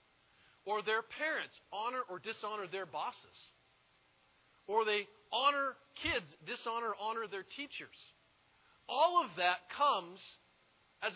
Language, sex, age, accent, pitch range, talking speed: English, male, 40-59, American, 190-265 Hz, 120 wpm